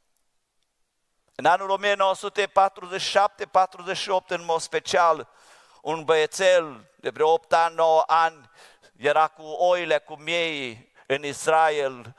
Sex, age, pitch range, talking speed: male, 50-69, 155-210 Hz, 105 wpm